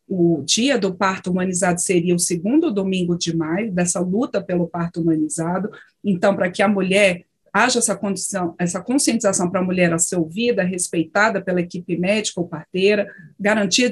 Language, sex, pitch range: Portuguese, female, 180-215 Hz